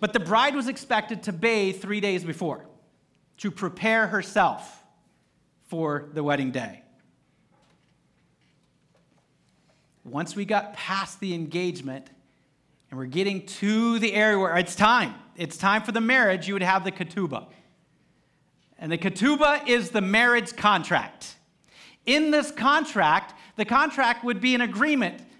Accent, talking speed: American, 135 wpm